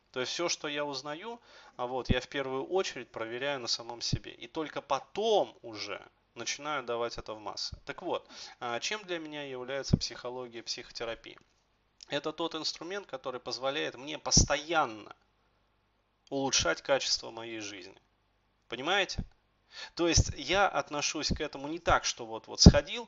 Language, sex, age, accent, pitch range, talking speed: Russian, male, 30-49, native, 115-160 Hz, 145 wpm